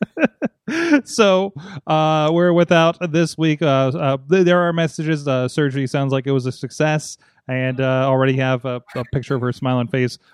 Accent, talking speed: American, 180 wpm